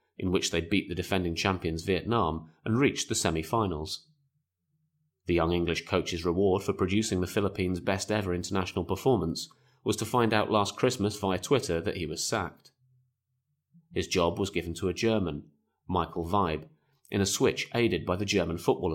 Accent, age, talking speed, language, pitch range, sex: British, 30-49, 170 wpm, English, 85-100 Hz, male